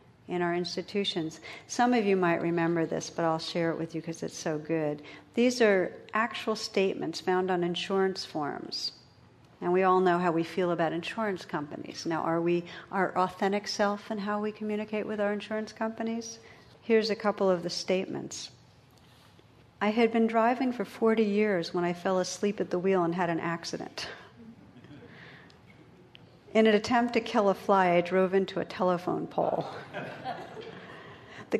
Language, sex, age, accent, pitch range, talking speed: English, female, 50-69, American, 175-215 Hz, 170 wpm